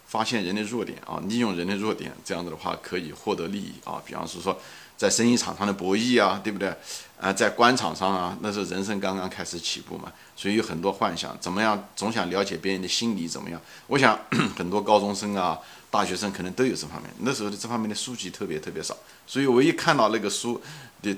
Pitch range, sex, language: 95-125 Hz, male, Chinese